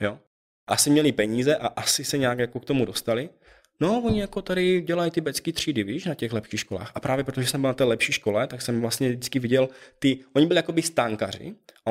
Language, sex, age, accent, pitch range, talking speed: Czech, male, 20-39, native, 115-150 Hz, 215 wpm